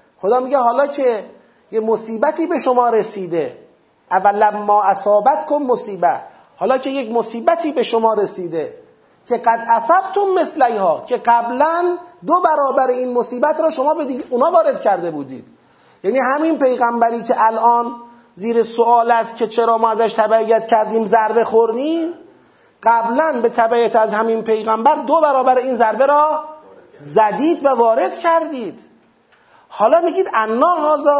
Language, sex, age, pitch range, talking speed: Persian, male, 30-49, 220-290 Hz, 145 wpm